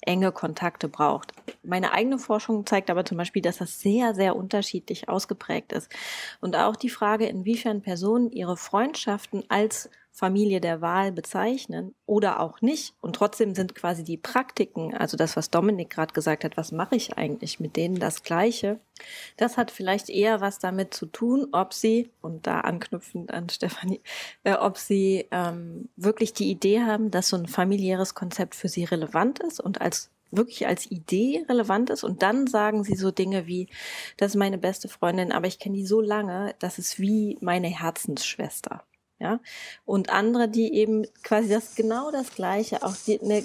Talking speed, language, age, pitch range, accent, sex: 175 wpm, German, 20-39, 185-225 Hz, German, female